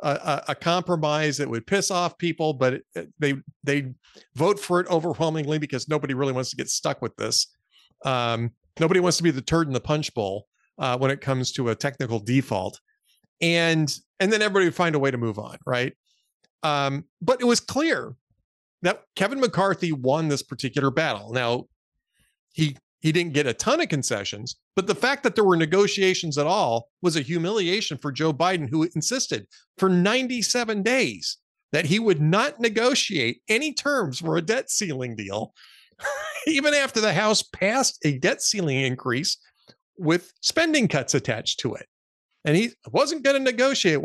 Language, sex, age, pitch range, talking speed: English, male, 40-59, 135-195 Hz, 175 wpm